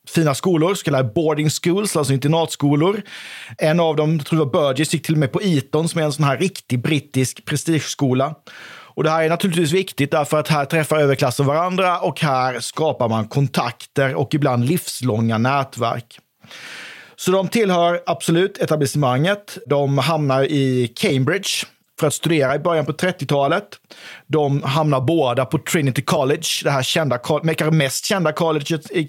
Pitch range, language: 135-165 Hz, Swedish